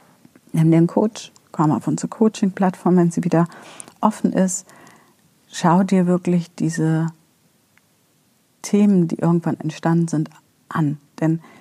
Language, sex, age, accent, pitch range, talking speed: German, female, 50-69, German, 160-195 Hz, 125 wpm